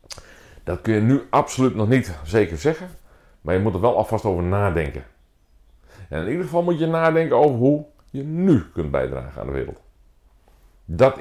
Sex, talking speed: male, 180 wpm